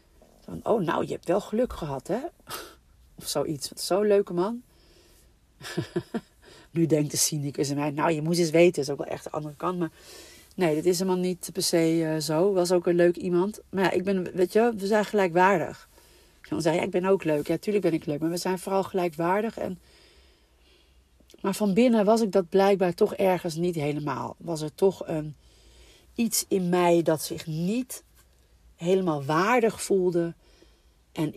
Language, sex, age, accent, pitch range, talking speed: Dutch, female, 40-59, Dutch, 150-185 Hz, 190 wpm